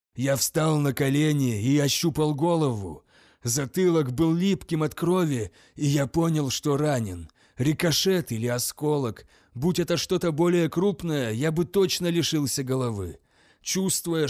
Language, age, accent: Russian, 30-49, native